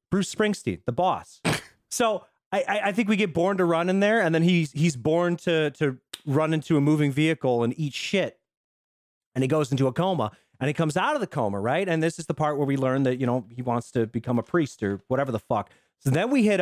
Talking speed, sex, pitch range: 250 wpm, male, 130-175 Hz